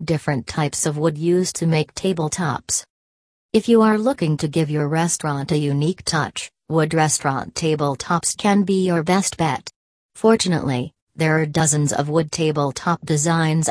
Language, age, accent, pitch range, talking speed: English, 40-59, American, 145-170 Hz, 155 wpm